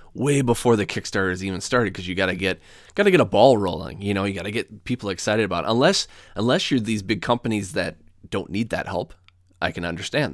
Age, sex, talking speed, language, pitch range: 20-39, male, 245 wpm, English, 90-115 Hz